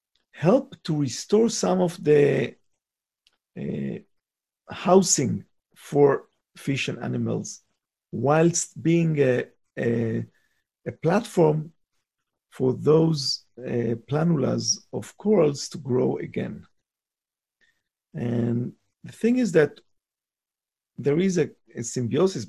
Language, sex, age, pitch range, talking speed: English, male, 50-69, 125-175 Hz, 95 wpm